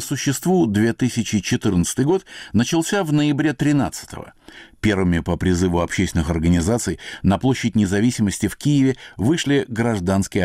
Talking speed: 110 wpm